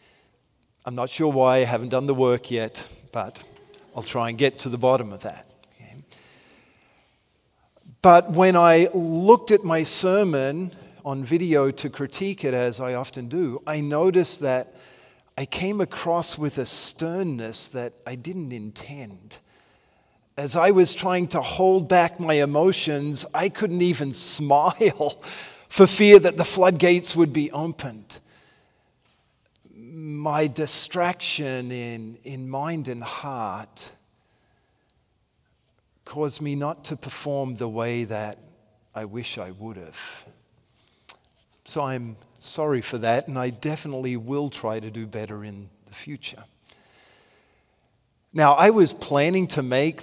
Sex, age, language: male, 40-59, English